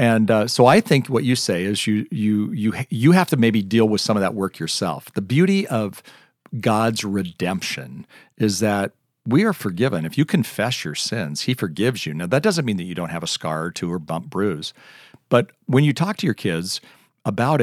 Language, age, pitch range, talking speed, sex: English, 50-69, 100-135 Hz, 220 wpm, male